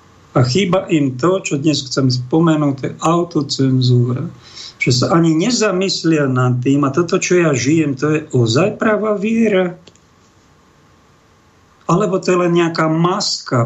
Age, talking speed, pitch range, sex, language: 50-69, 145 wpm, 130-185 Hz, male, Slovak